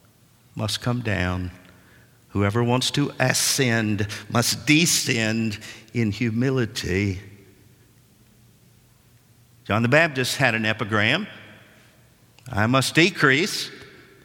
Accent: American